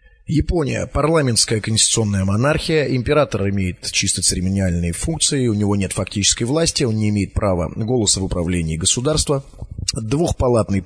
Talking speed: 125 wpm